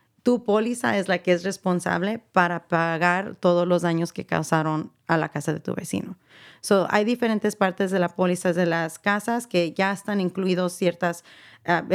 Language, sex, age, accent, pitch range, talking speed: Spanish, female, 30-49, Mexican, 175-195 Hz, 180 wpm